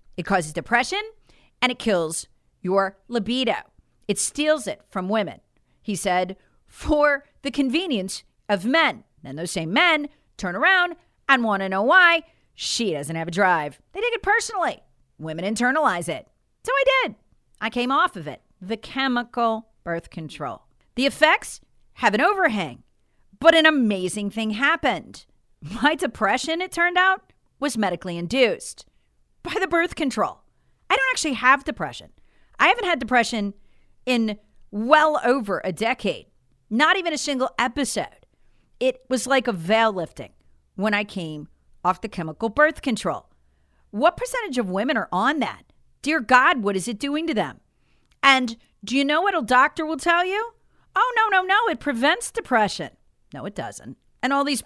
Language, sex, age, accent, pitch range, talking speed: English, female, 40-59, American, 195-310 Hz, 160 wpm